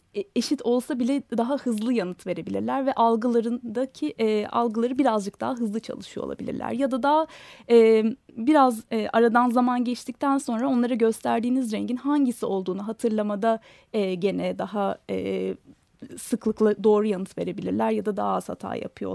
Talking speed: 145 wpm